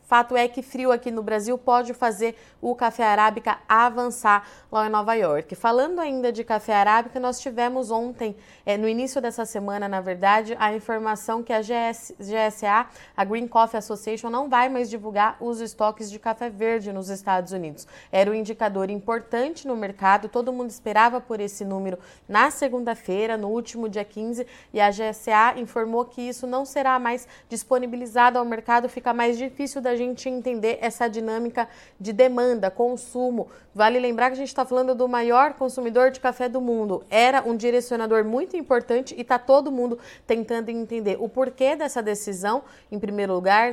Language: Portuguese